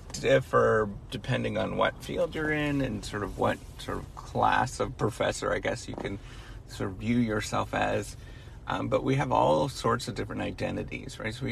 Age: 30-49